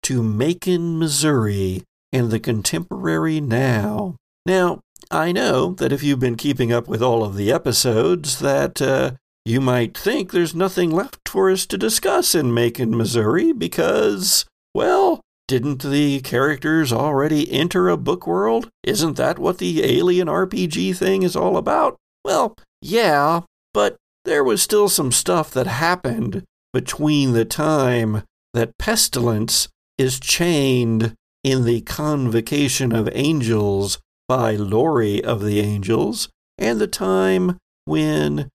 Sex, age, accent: male, 60-79, American